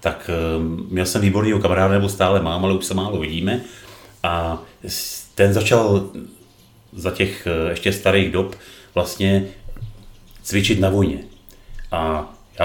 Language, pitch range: Czech, 95-105 Hz